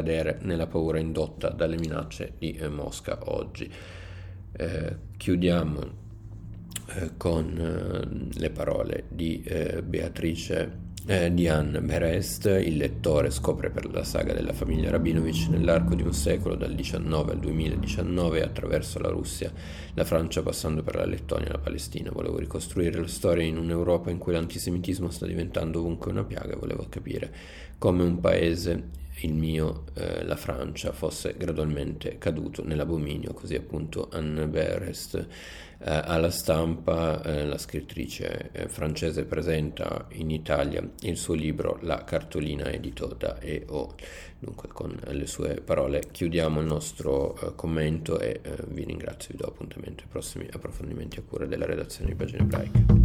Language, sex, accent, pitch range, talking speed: Italian, male, native, 80-90 Hz, 145 wpm